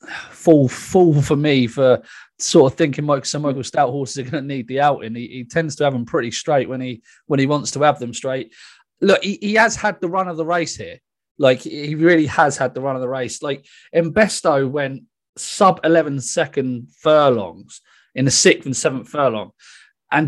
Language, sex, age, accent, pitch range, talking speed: English, male, 30-49, British, 125-155 Hz, 205 wpm